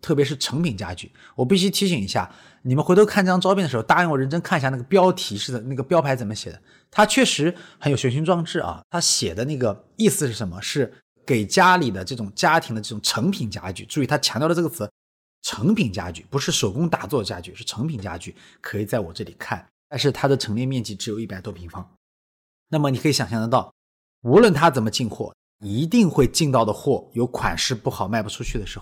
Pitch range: 105-160 Hz